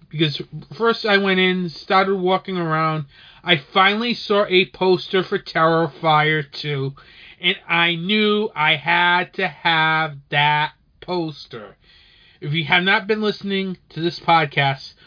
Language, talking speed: English, 135 wpm